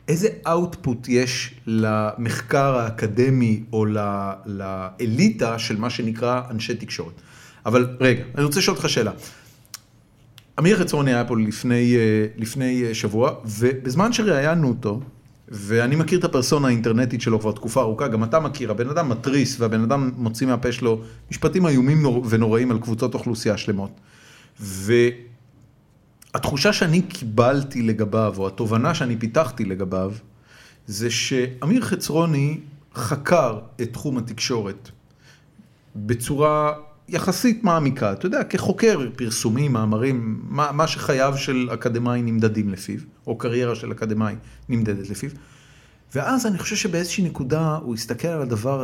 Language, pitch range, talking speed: Hebrew, 115-145 Hz, 130 wpm